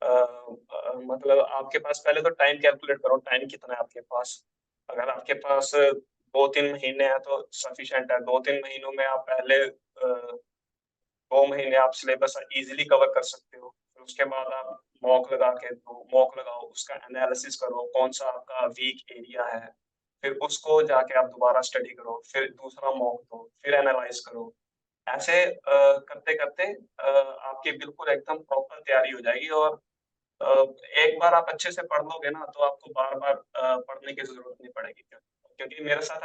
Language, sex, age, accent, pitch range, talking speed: Hindi, male, 20-39, native, 130-155 Hz, 160 wpm